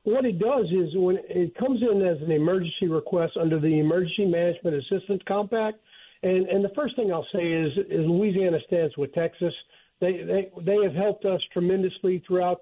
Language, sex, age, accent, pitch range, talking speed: English, male, 50-69, American, 160-195 Hz, 185 wpm